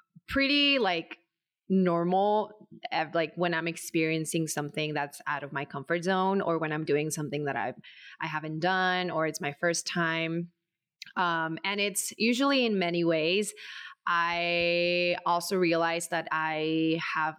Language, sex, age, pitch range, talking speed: English, female, 20-39, 160-190 Hz, 145 wpm